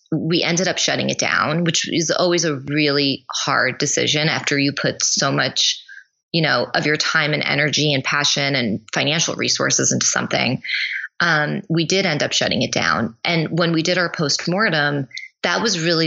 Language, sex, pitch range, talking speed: English, female, 145-175 Hz, 185 wpm